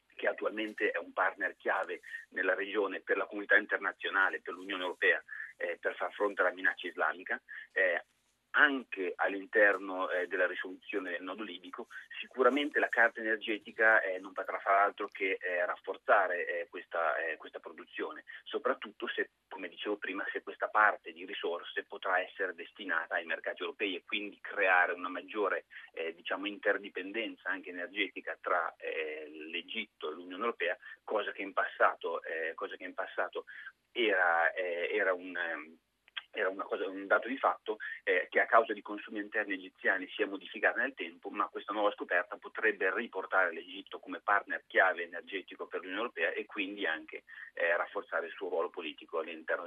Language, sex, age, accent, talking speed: Italian, male, 30-49, native, 160 wpm